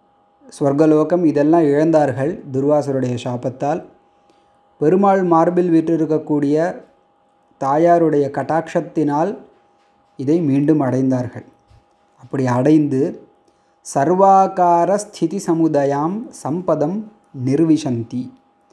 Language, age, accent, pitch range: Tamil, 30-49, native, 140-175 Hz